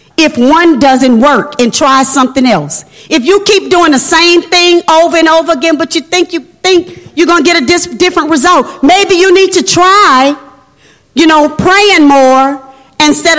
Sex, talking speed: female, 185 wpm